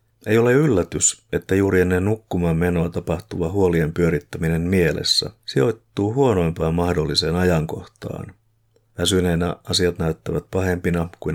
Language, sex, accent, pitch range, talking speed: Finnish, male, native, 85-110 Hz, 110 wpm